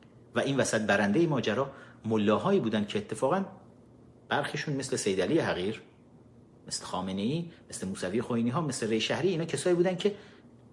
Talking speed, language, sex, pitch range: 155 wpm, Persian, male, 110-165 Hz